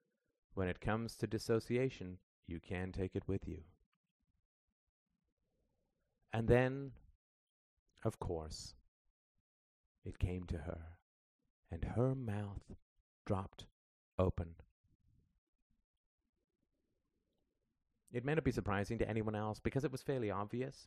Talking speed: 105 wpm